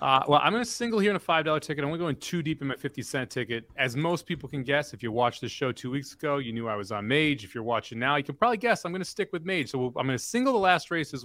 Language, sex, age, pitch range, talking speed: English, male, 30-49, 125-170 Hz, 350 wpm